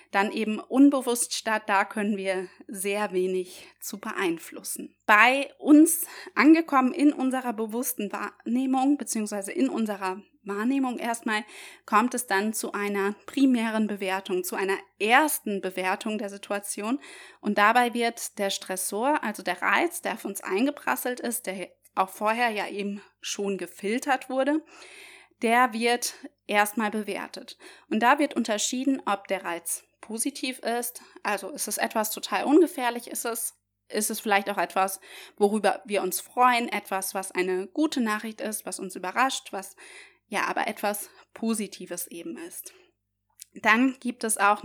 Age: 20-39